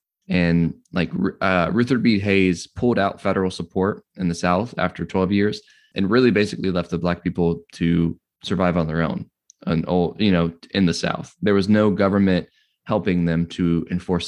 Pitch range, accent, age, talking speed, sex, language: 85-105 Hz, American, 20-39, 180 wpm, male, English